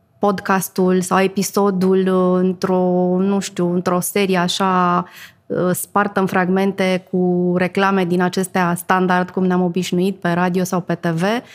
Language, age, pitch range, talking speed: Romanian, 20-39, 180-205 Hz, 115 wpm